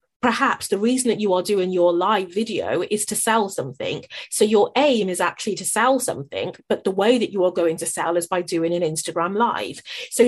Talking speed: 220 wpm